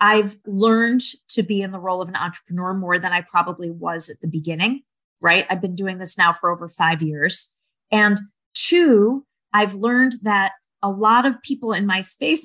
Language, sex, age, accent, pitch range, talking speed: English, female, 30-49, American, 180-215 Hz, 195 wpm